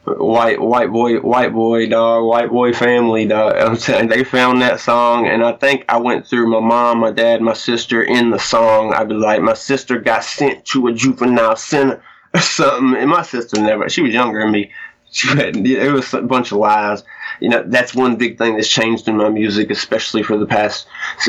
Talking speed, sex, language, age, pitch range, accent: 210 wpm, male, English, 20-39, 110-125 Hz, American